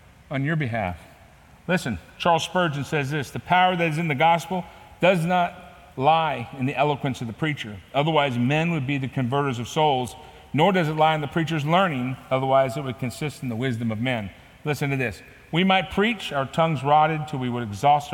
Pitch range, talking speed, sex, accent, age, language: 125-170 Hz, 205 wpm, male, American, 50-69, English